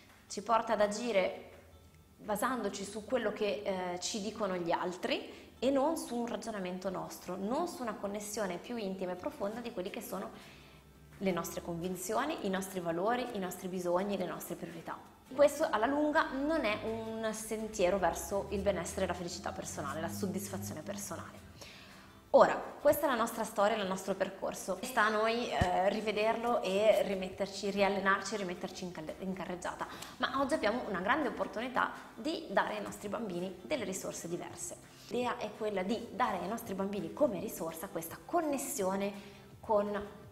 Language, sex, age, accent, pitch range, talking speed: Italian, female, 20-39, native, 185-235 Hz, 160 wpm